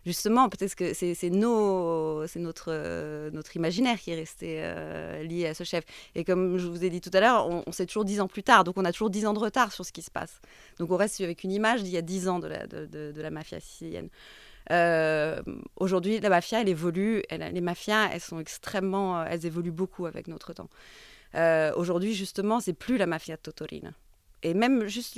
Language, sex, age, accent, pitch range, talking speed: French, female, 30-49, French, 165-200 Hz, 235 wpm